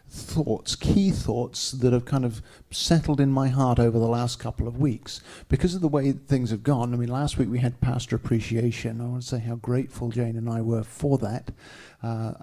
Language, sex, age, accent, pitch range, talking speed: English, male, 50-69, British, 115-135 Hz, 215 wpm